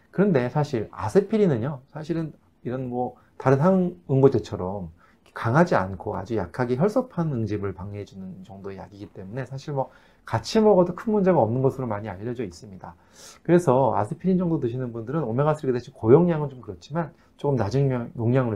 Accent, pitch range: native, 105-150 Hz